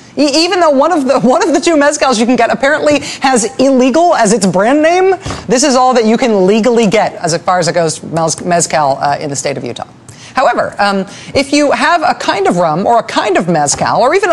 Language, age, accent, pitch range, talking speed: English, 40-59, American, 205-300 Hz, 240 wpm